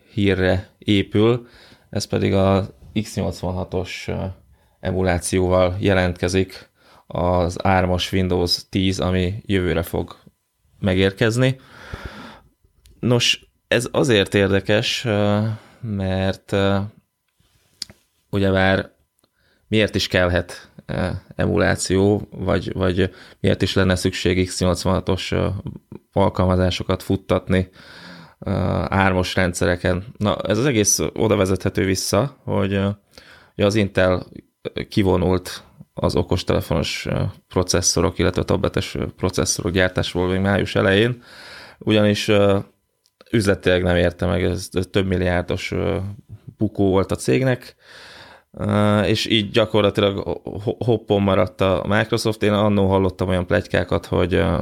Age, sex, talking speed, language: 20-39, male, 95 wpm, Hungarian